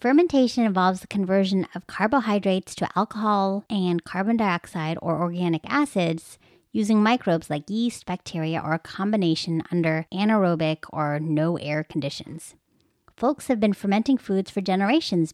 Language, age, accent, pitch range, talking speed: English, 30-49, American, 170-225 Hz, 135 wpm